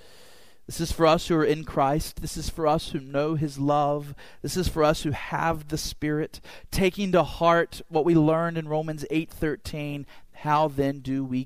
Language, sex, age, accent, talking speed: English, male, 40-59, American, 195 wpm